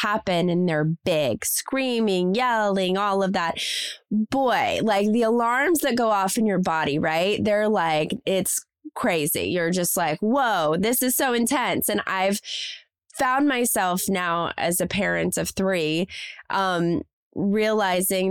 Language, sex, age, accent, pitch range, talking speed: English, female, 20-39, American, 180-235 Hz, 145 wpm